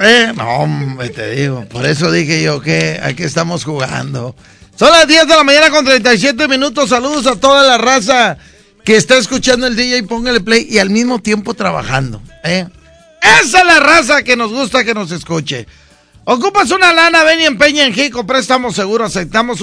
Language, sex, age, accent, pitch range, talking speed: Spanish, male, 40-59, Mexican, 150-215 Hz, 185 wpm